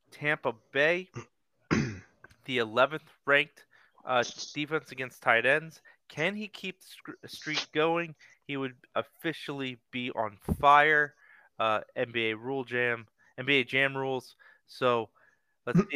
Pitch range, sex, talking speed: 120-150 Hz, male, 120 wpm